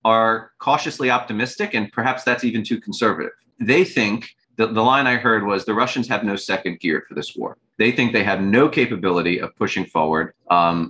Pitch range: 95-120 Hz